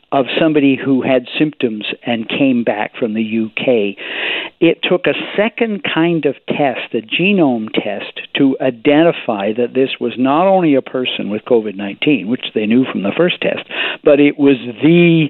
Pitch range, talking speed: 125-155 Hz, 170 wpm